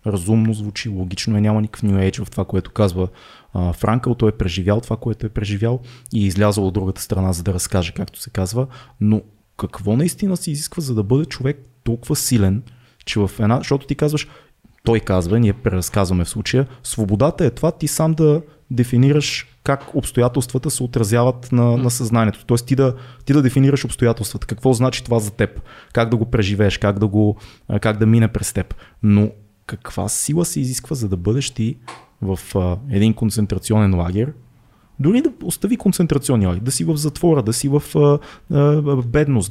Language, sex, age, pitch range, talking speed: Bulgarian, male, 20-39, 105-135 Hz, 180 wpm